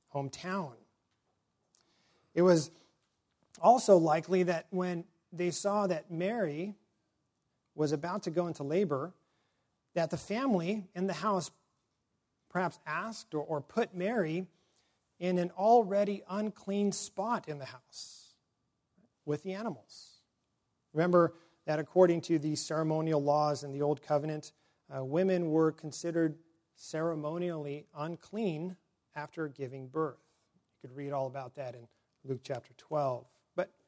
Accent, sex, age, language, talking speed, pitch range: American, male, 40-59, English, 125 wpm, 140-180 Hz